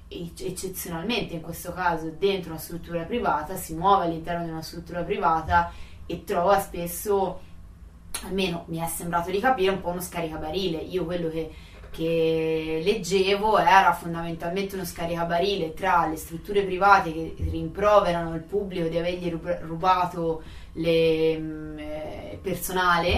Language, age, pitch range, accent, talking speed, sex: Italian, 20-39, 160-180 Hz, native, 130 wpm, female